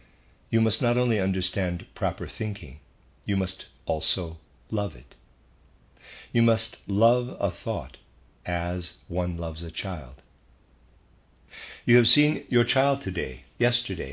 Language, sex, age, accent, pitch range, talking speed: English, male, 60-79, American, 75-105 Hz, 125 wpm